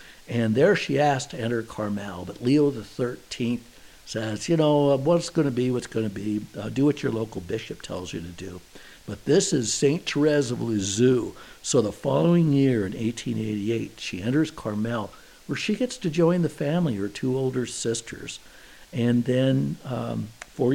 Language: English